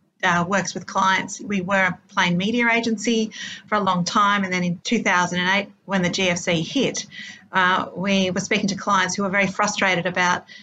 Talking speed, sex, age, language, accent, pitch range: 185 wpm, female, 40-59, English, Australian, 180-205 Hz